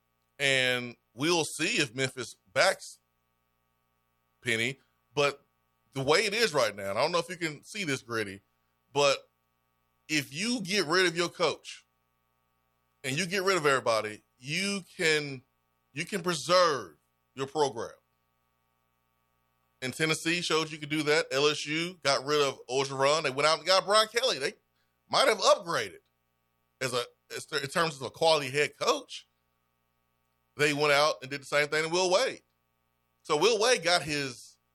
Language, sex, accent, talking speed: English, male, American, 160 wpm